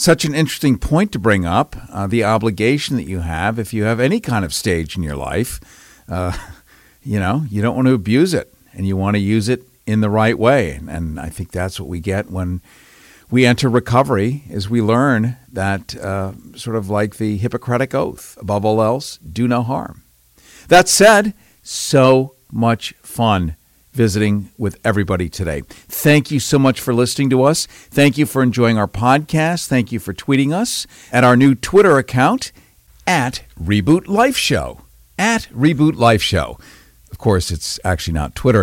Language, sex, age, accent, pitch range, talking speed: English, male, 50-69, American, 100-135 Hz, 180 wpm